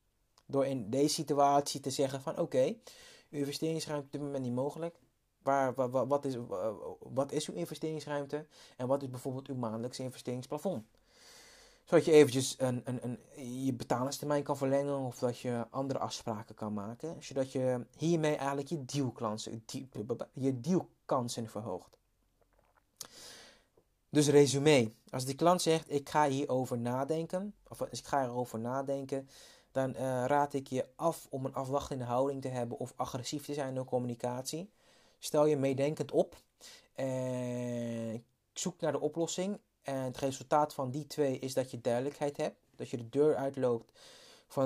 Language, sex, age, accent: Dutch, male, 20-39, Dutch